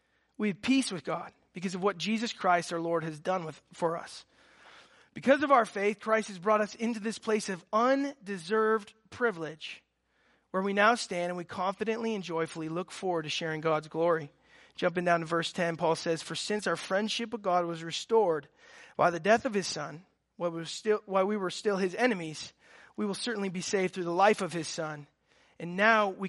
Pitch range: 170-230 Hz